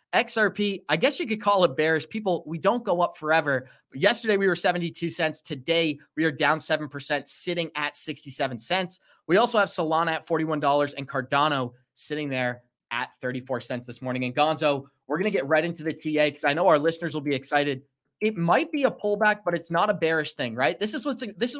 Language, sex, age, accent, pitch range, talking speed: English, male, 20-39, American, 140-185 Hz, 210 wpm